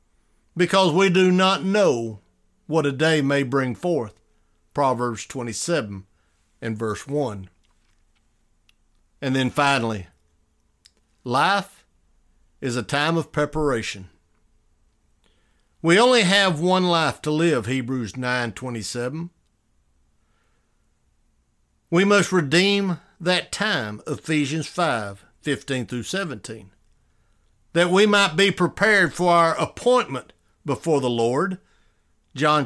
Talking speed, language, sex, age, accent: 105 wpm, English, male, 60-79, American